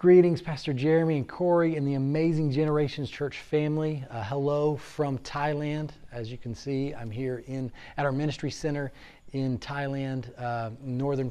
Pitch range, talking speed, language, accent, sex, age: 115-140 Hz, 155 wpm, English, American, male, 30-49